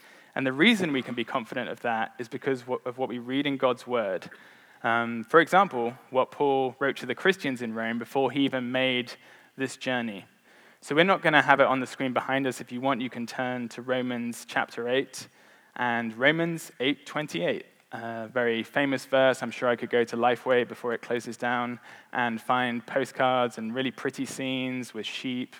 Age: 20-39